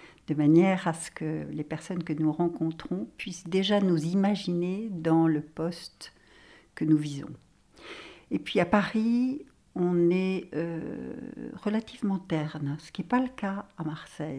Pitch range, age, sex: 150-200 Hz, 60-79, female